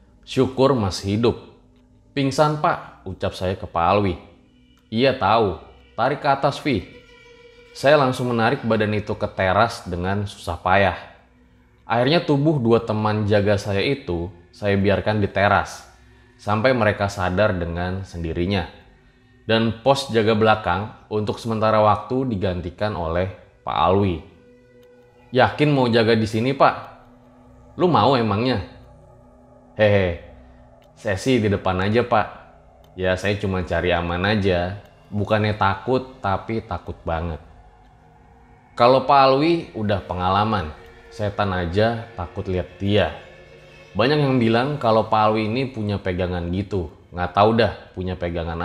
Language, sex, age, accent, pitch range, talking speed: Indonesian, male, 20-39, native, 90-120 Hz, 130 wpm